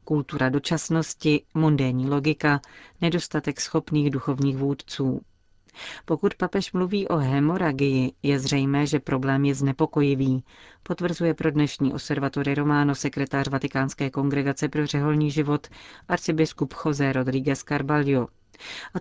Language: Czech